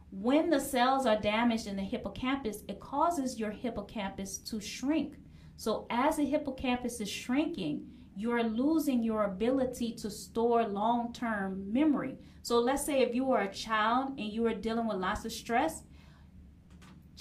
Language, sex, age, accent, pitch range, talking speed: English, female, 30-49, American, 225-285 Hz, 155 wpm